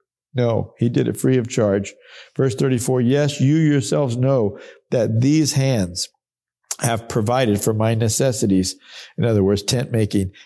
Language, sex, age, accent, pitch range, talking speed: English, male, 50-69, American, 110-135 Hz, 150 wpm